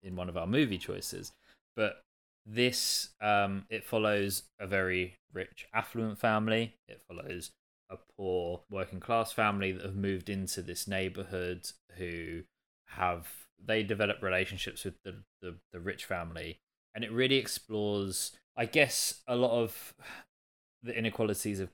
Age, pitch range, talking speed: 20-39, 90-105 Hz, 145 wpm